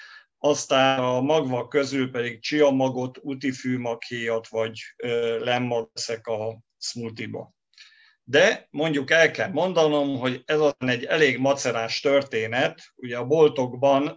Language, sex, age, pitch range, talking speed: Hungarian, male, 50-69, 125-140 Hz, 110 wpm